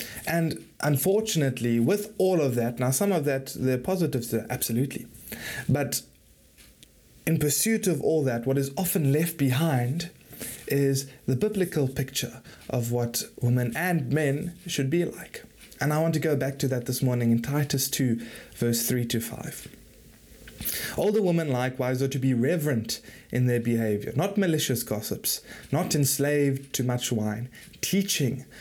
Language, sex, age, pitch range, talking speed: English, male, 20-39, 120-160 Hz, 155 wpm